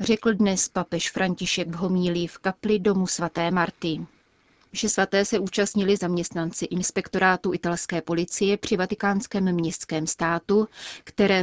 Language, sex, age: Czech, female, 30-49